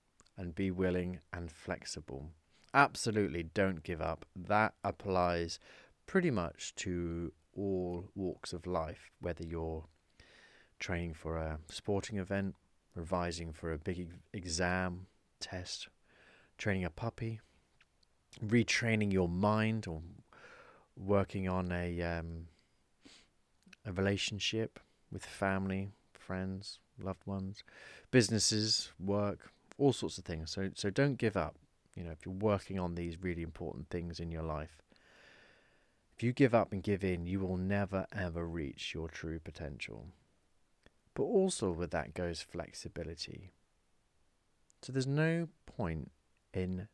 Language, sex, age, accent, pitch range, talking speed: English, male, 30-49, British, 85-100 Hz, 125 wpm